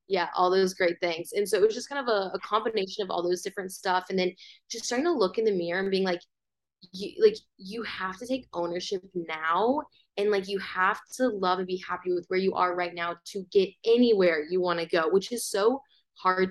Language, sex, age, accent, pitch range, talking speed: English, female, 20-39, American, 170-200 Hz, 235 wpm